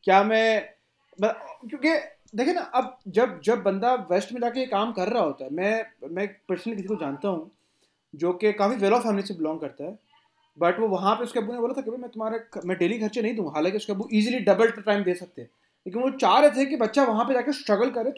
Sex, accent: male, Indian